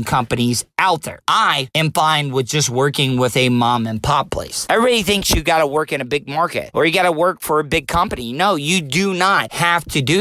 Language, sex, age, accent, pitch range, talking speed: English, male, 40-59, American, 135-180 Hz, 240 wpm